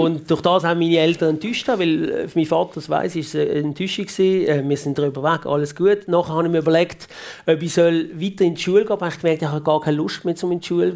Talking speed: 280 wpm